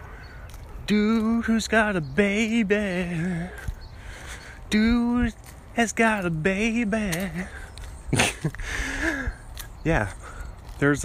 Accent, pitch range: American, 100-130 Hz